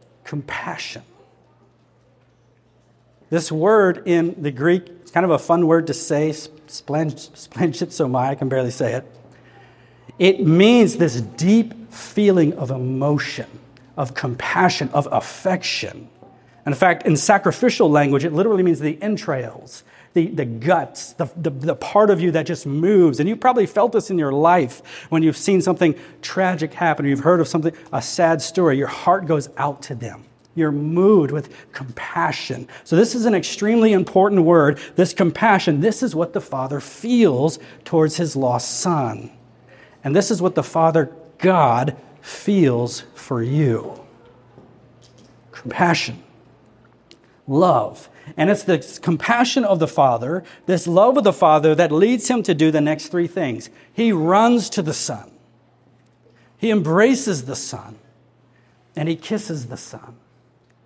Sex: male